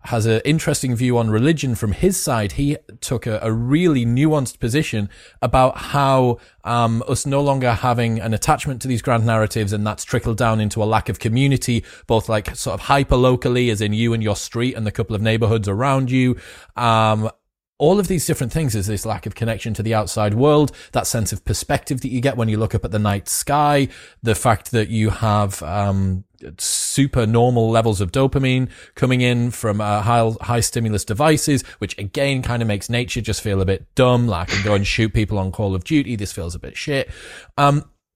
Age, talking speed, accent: 30-49, 210 wpm, British